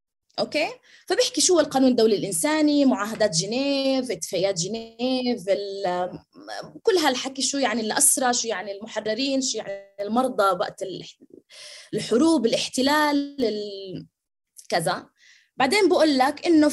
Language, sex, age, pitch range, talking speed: Arabic, female, 20-39, 170-265 Hz, 100 wpm